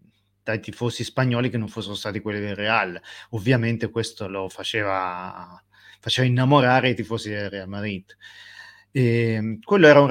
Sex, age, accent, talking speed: male, 30-49, native, 150 wpm